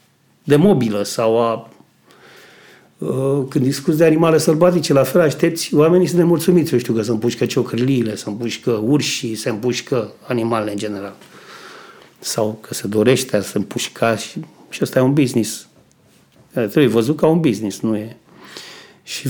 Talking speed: 155 wpm